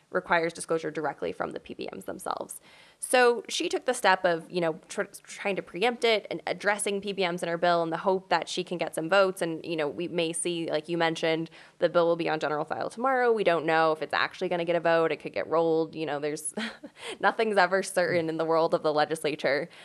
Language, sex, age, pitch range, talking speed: English, female, 10-29, 160-195 Hz, 240 wpm